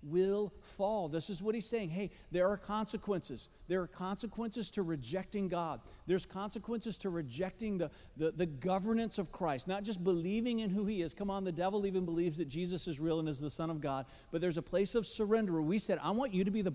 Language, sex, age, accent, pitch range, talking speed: English, male, 50-69, American, 135-195 Hz, 235 wpm